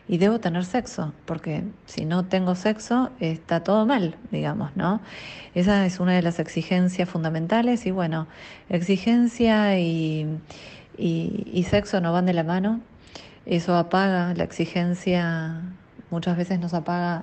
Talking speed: 140 wpm